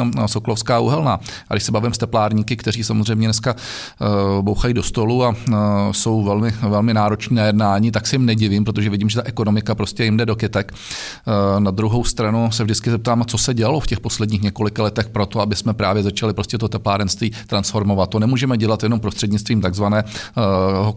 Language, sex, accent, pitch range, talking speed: Czech, male, native, 105-115 Hz, 180 wpm